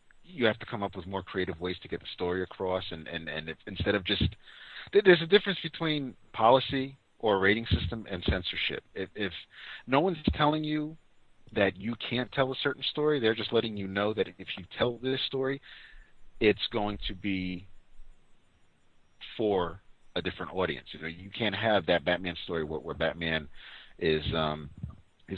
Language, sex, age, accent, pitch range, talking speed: English, male, 40-59, American, 85-115 Hz, 180 wpm